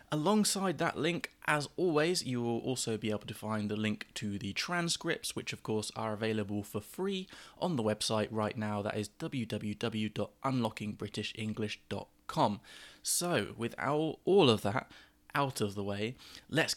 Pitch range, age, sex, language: 105-145 Hz, 20-39, male, English